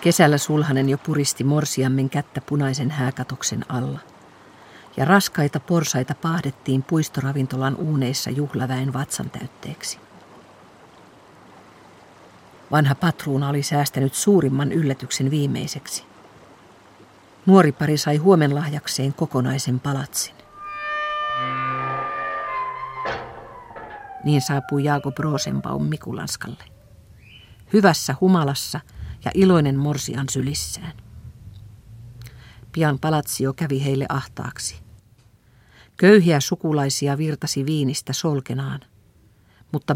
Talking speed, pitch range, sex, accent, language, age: 80 wpm, 130-160 Hz, female, native, Finnish, 50-69